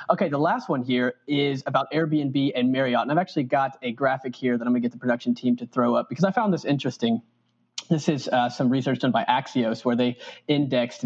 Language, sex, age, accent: English, male, 20-39, American